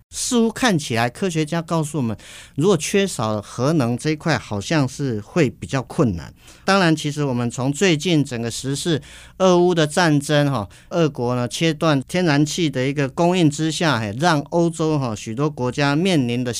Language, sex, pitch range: Chinese, male, 125-165 Hz